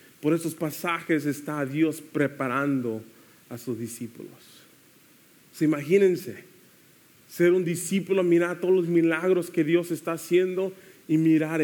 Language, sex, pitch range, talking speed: English, male, 115-160 Hz, 130 wpm